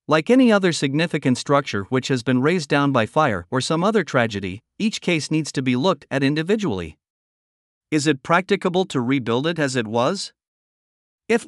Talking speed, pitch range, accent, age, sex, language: 180 wpm, 125-170 Hz, American, 50-69, male, English